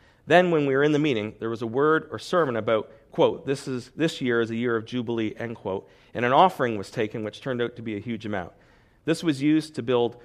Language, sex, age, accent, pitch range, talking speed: English, male, 40-59, American, 110-140 Hz, 250 wpm